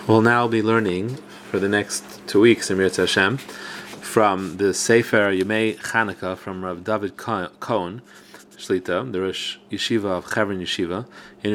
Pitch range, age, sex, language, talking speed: 100-130 Hz, 30-49, male, English, 140 wpm